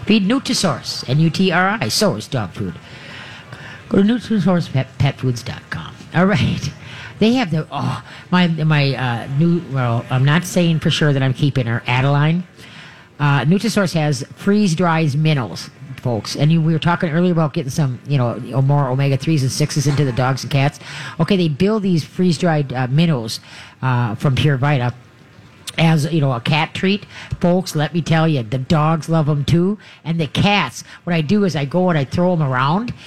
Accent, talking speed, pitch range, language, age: American, 190 wpm, 140-180 Hz, English, 50-69